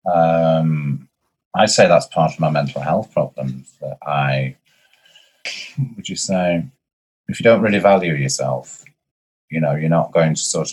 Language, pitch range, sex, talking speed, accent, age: English, 70-85 Hz, male, 155 wpm, British, 30-49